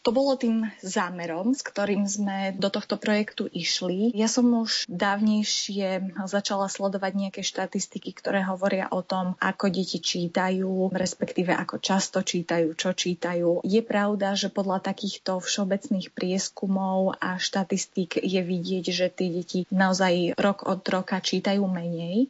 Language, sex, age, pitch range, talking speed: Slovak, female, 20-39, 180-205 Hz, 140 wpm